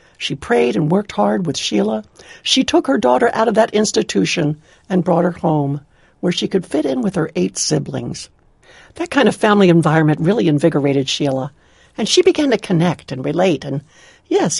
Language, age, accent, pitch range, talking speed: English, 60-79, American, 160-245 Hz, 185 wpm